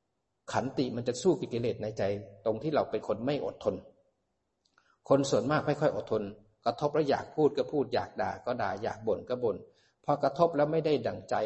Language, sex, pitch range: Thai, male, 110-145 Hz